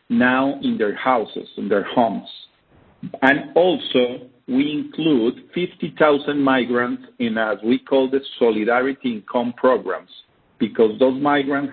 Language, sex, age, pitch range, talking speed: English, male, 50-69, 115-140 Hz, 125 wpm